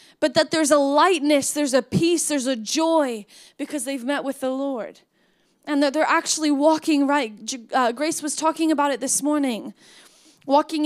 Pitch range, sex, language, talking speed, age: 270-320 Hz, female, English, 175 wpm, 10-29